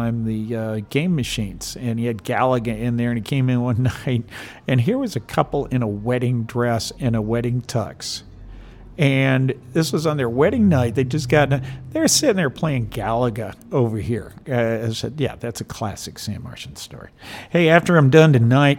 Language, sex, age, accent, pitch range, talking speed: English, male, 50-69, American, 110-140 Hz, 195 wpm